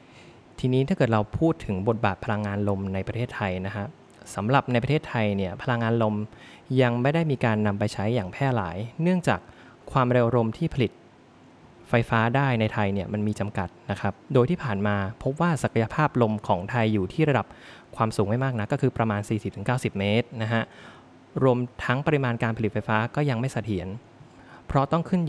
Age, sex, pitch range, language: 20-39, male, 105-125 Hz, Thai